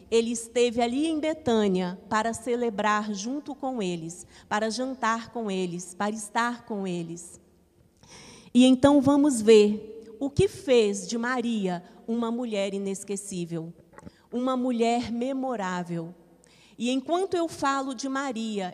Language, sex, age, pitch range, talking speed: Portuguese, female, 40-59, 210-265 Hz, 125 wpm